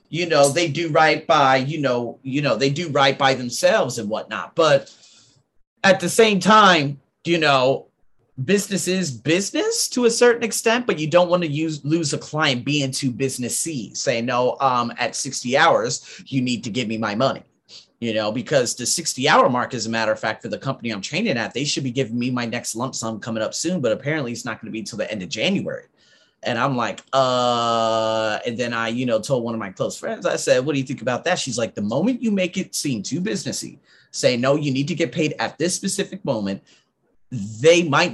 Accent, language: American, English